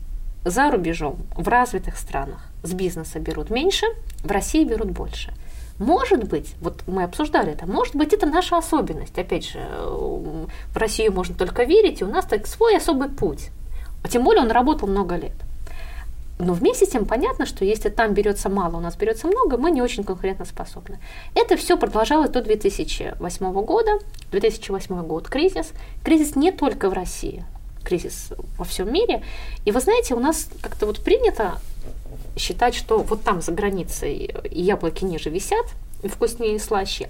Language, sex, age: Russian, female, 20-39